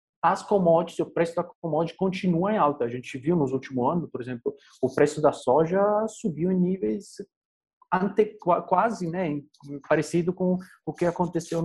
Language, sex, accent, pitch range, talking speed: Portuguese, male, Brazilian, 145-190 Hz, 160 wpm